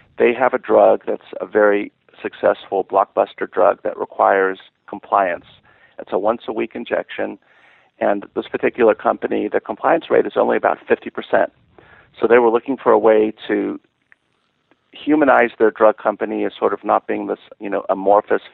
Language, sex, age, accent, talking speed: English, male, 50-69, American, 170 wpm